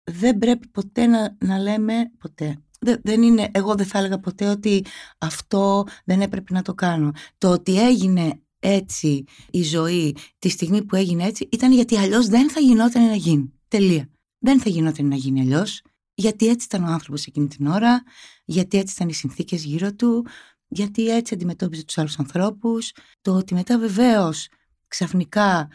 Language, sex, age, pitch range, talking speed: Greek, female, 20-39, 165-245 Hz, 165 wpm